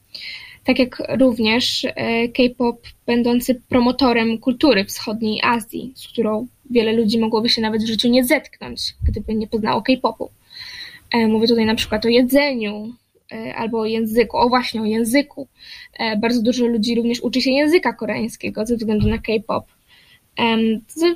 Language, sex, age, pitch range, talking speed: Polish, female, 10-29, 230-265 Hz, 140 wpm